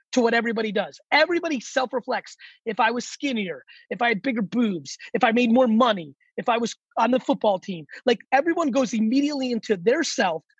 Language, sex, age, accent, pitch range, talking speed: English, male, 30-49, American, 215-270 Hz, 200 wpm